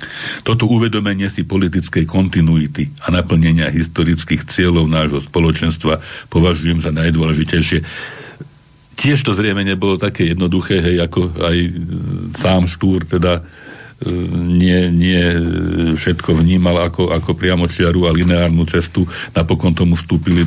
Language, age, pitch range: Slovak, 60-79, 80-95 Hz